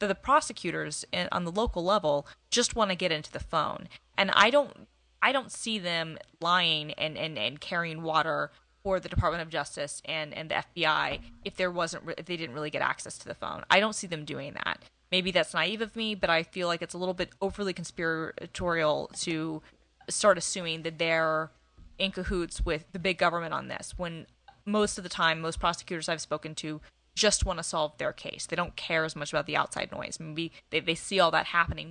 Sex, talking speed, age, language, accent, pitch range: female, 215 wpm, 20-39, English, American, 155-185 Hz